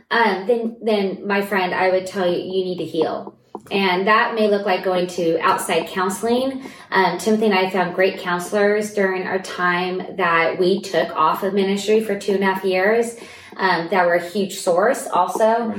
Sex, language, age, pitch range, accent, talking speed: female, English, 20-39, 180-210 Hz, American, 195 wpm